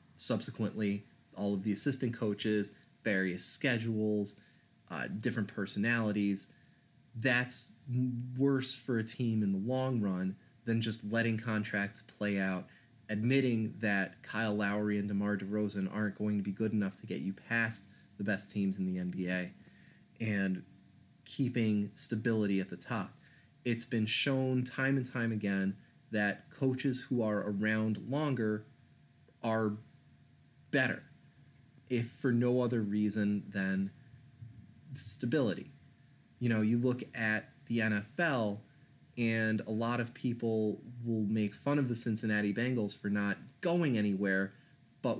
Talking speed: 135 wpm